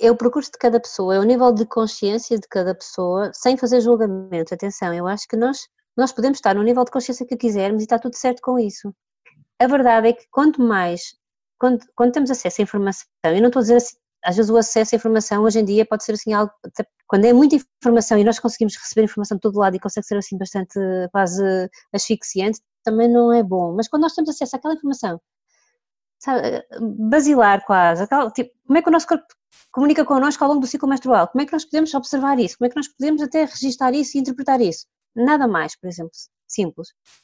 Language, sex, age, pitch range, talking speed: Portuguese, female, 20-39, 205-260 Hz, 225 wpm